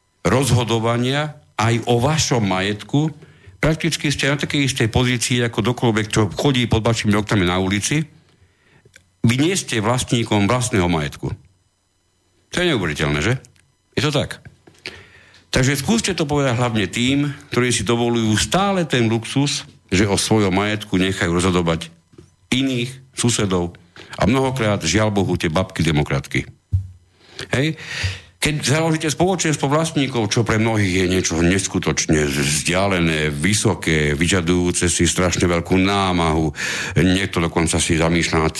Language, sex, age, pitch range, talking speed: Slovak, male, 50-69, 90-130 Hz, 125 wpm